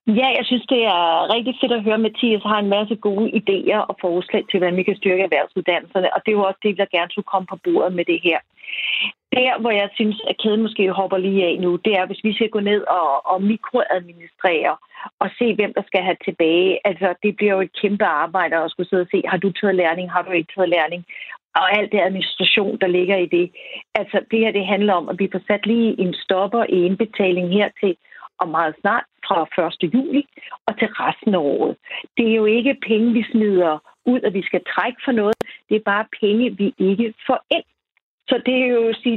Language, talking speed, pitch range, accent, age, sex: Danish, 230 wpm, 185-230 Hz, native, 40-59, female